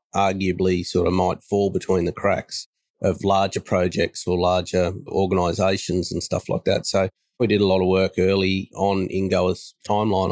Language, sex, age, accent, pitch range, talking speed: English, male, 30-49, Australian, 90-95 Hz, 175 wpm